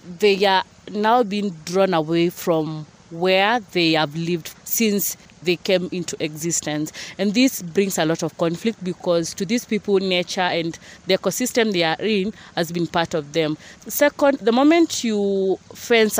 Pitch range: 175-220 Hz